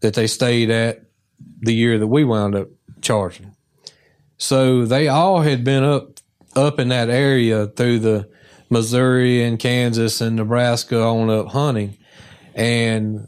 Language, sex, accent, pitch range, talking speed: English, male, American, 110-125 Hz, 145 wpm